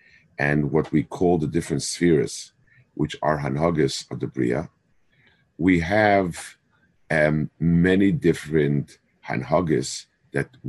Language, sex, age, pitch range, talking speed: English, male, 50-69, 75-95 Hz, 110 wpm